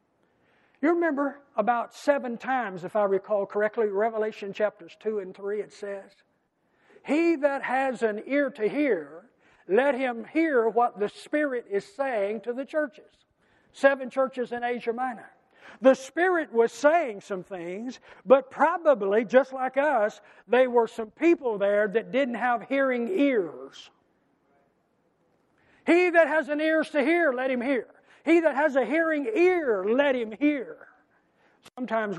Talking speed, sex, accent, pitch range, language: 150 wpm, male, American, 180-265 Hz, English